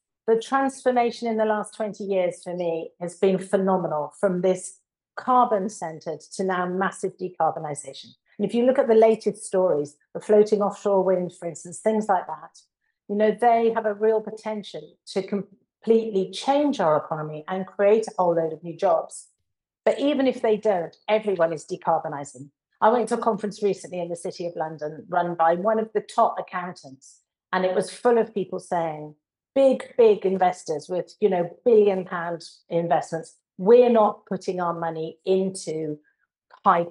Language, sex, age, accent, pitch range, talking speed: English, female, 50-69, British, 170-215 Hz, 170 wpm